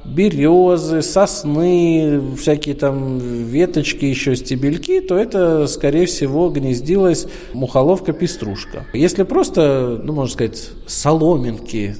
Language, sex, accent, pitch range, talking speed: Russian, male, native, 120-160 Hz, 95 wpm